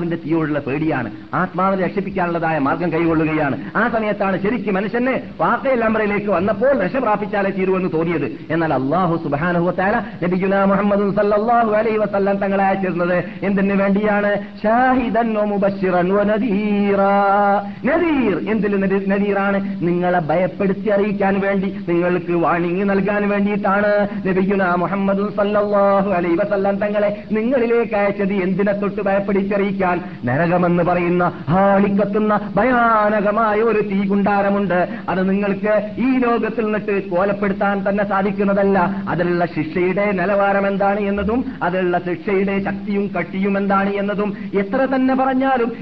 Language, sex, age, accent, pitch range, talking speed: Malayalam, male, 50-69, native, 180-210 Hz, 45 wpm